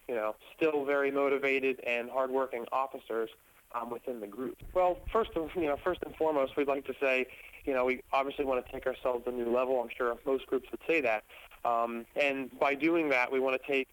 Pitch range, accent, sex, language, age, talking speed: 125-145 Hz, American, male, English, 30-49, 220 wpm